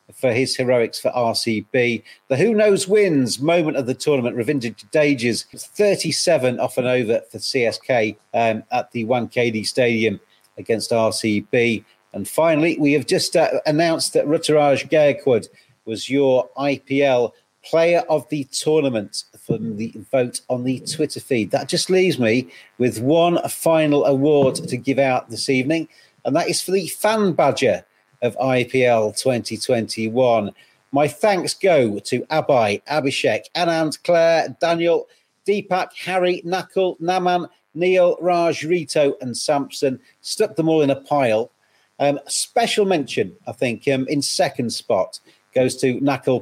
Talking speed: 145 wpm